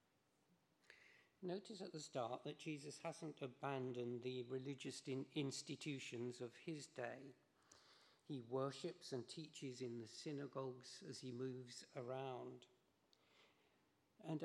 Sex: male